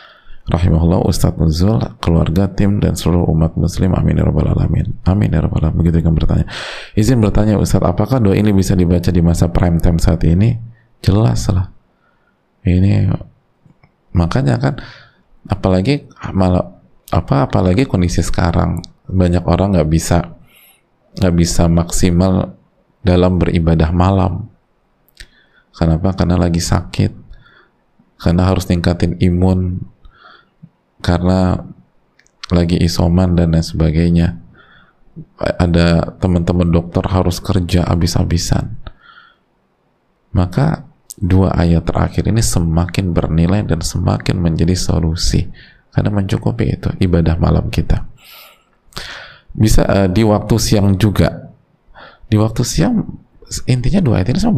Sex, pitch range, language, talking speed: male, 85-100 Hz, Indonesian, 115 wpm